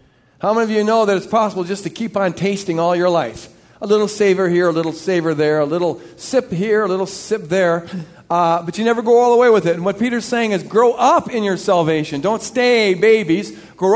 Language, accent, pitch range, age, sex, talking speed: English, American, 180-230 Hz, 50-69, male, 240 wpm